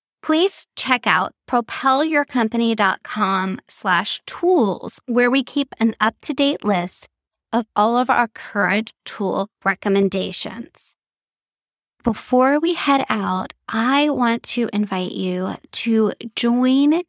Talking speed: 105 wpm